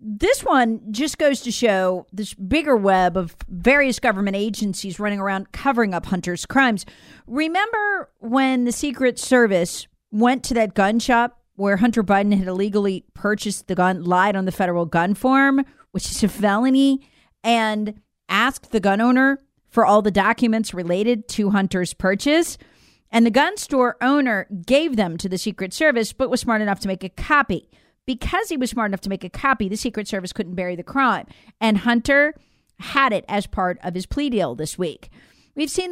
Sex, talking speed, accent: female, 180 wpm, American